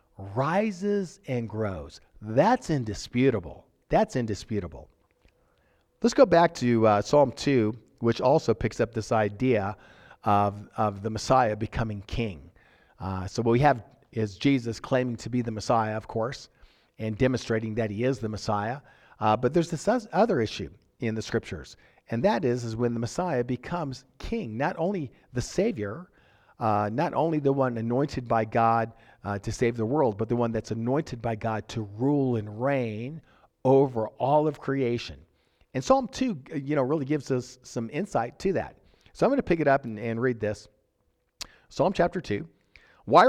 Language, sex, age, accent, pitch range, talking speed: English, male, 50-69, American, 110-150 Hz, 170 wpm